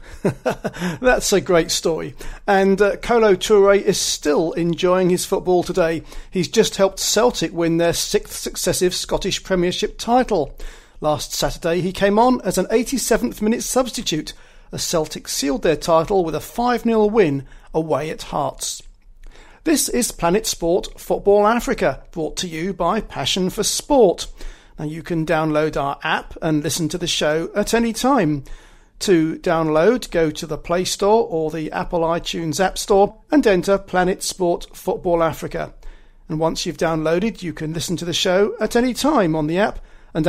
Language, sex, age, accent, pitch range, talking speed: English, male, 40-59, British, 165-210 Hz, 165 wpm